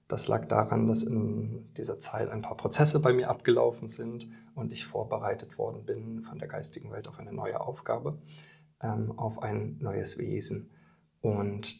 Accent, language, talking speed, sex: German, German, 165 wpm, male